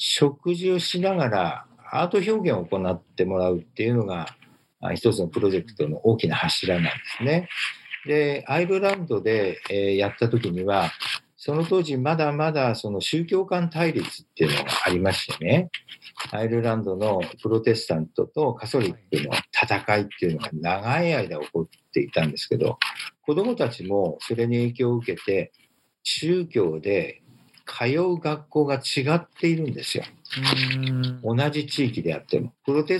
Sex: male